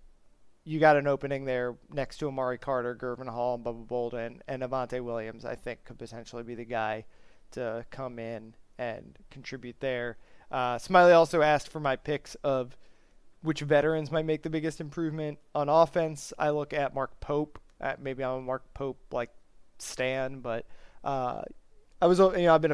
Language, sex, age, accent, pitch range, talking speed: English, male, 30-49, American, 125-160 Hz, 180 wpm